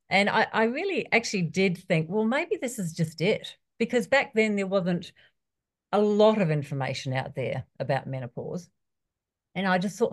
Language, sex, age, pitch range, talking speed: English, female, 50-69, 145-210 Hz, 180 wpm